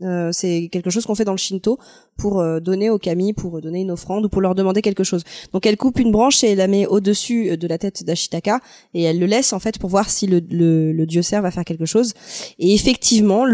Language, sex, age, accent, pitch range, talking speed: French, female, 20-39, French, 175-225 Hz, 260 wpm